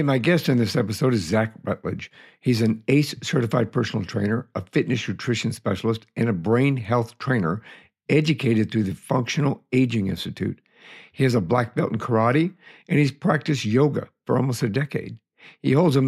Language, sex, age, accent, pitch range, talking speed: English, male, 60-79, American, 110-135 Hz, 175 wpm